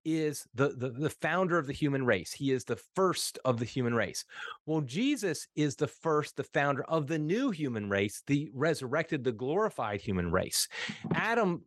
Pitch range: 130-170 Hz